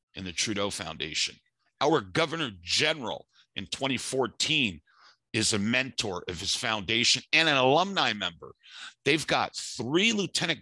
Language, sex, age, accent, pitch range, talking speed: English, male, 50-69, American, 100-135 Hz, 130 wpm